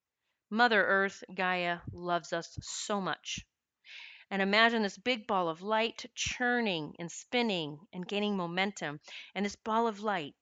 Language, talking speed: English, 145 wpm